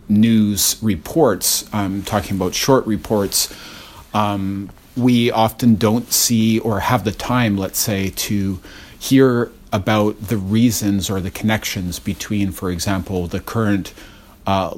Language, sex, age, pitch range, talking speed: English, male, 40-59, 95-115 Hz, 130 wpm